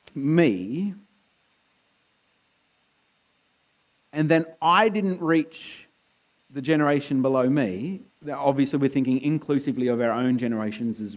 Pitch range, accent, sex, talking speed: 115-155 Hz, Australian, male, 105 wpm